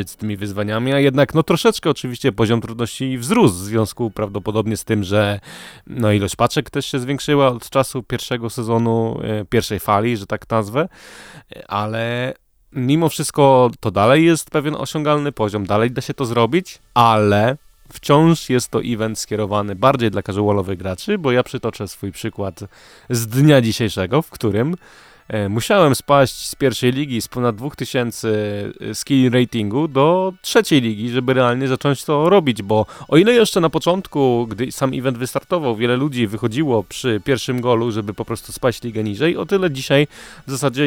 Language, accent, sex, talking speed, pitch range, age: Polish, native, male, 165 wpm, 110-140 Hz, 20-39